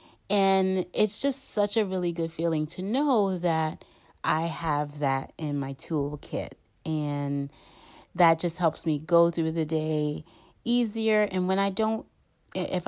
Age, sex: 30-49, female